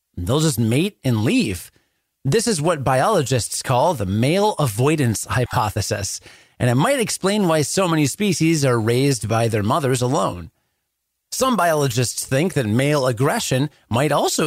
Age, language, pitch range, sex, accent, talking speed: 30-49, English, 115-155 Hz, male, American, 150 wpm